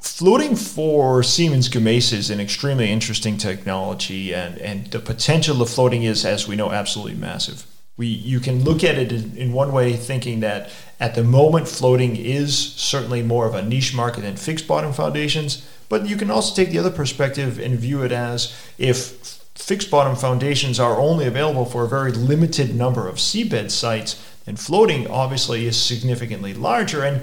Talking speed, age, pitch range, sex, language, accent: 180 wpm, 40-59, 115-150 Hz, male, English, American